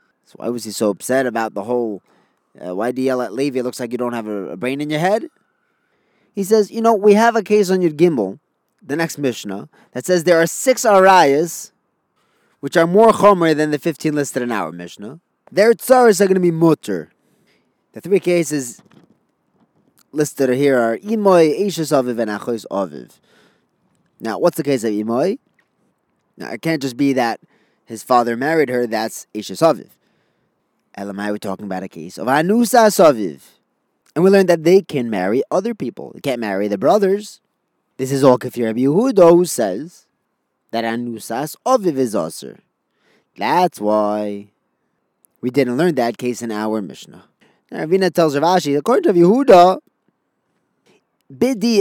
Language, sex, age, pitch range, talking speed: English, male, 20-39, 120-190 Hz, 175 wpm